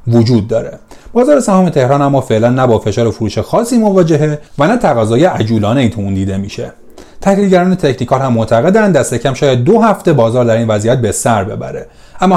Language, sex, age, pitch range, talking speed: Persian, male, 30-49, 115-170 Hz, 185 wpm